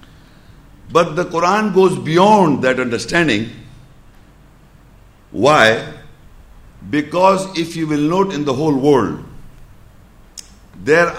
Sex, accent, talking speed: male, Indian, 95 wpm